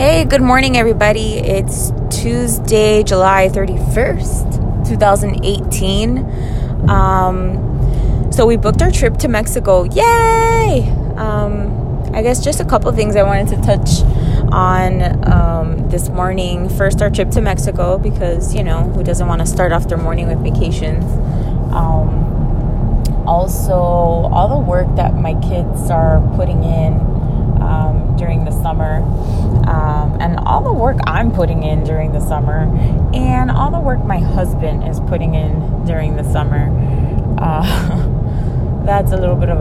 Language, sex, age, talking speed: English, female, 20-39, 145 wpm